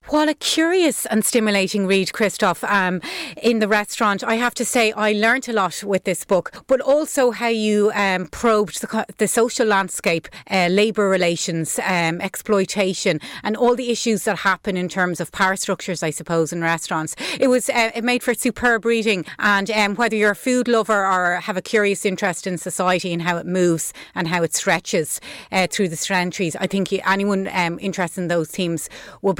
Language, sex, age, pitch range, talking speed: English, female, 30-49, 175-230 Hz, 195 wpm